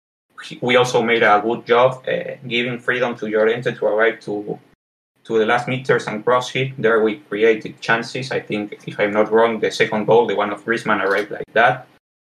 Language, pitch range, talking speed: English, 110-130 Hz, 200 wpm